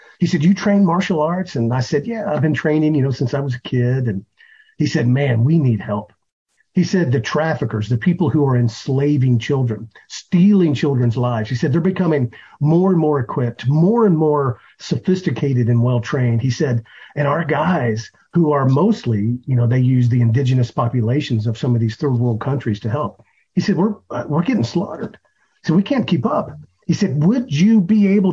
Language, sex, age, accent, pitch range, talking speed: English, male, 50-69, American, 120-165 Hz, 205 wpm